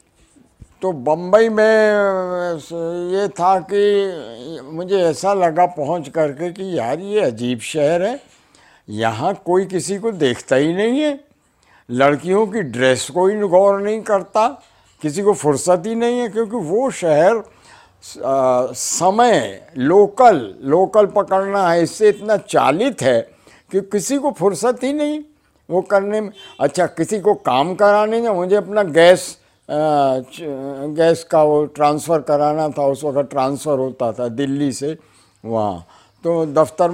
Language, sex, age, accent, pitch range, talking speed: Hindi, male, 60-79, native, 125-185 Hz, 140 wpm